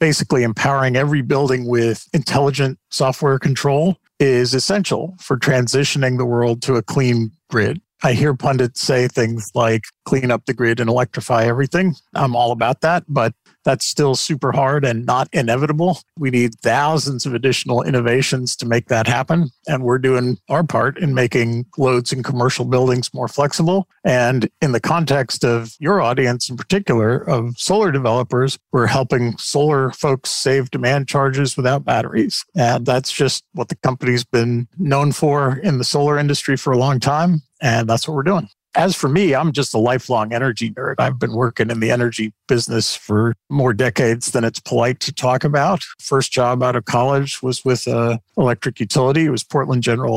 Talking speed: 175 wpm